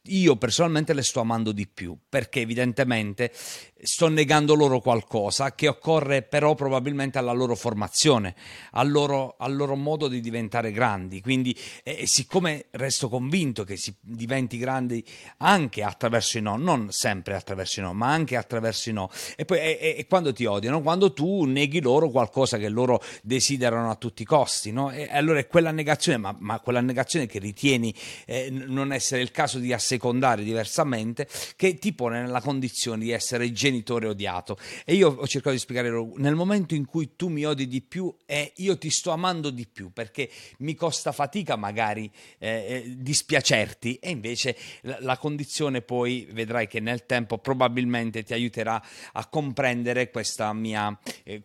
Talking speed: 170 wpm